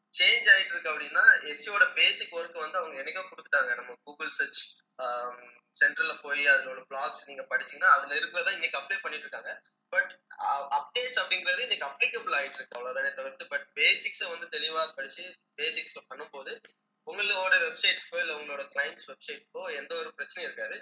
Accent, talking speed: Indian, 80 wpm